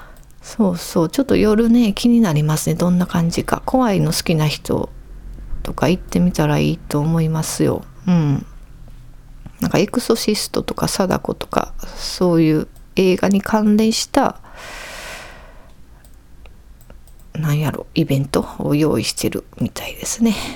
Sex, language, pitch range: female, Japanese, 145-195 Hz